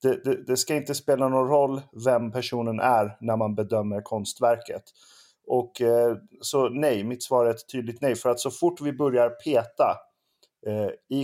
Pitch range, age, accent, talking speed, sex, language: 115-145 Hz, 30-49, native, 170 wpm, male, Swedish